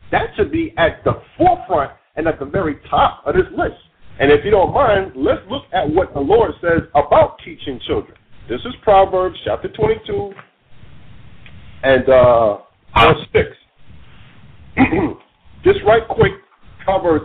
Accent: American